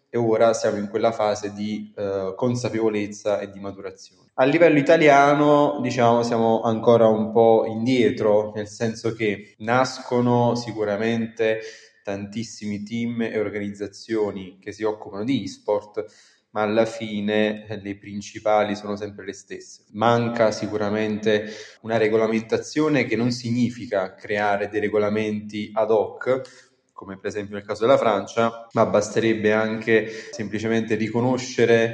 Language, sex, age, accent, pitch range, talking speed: Italian, male, 20-39, native, 105-115 Hz, 130 wpm